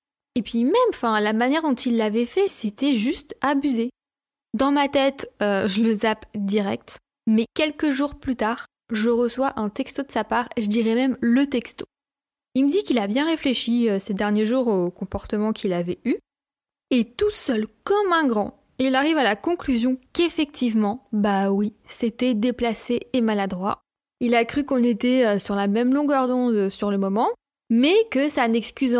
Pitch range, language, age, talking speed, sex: 220-275 Hz, French, 20-39, 180 wpm, female